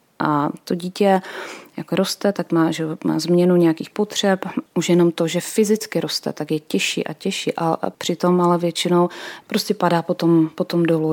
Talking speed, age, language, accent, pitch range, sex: 175 wpm, 30-49, Czech, native, 160-190 Hz, female